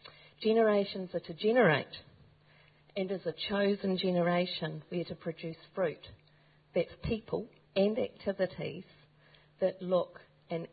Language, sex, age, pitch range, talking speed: English, female, 50-69, 160-195 Hz, 115 wpm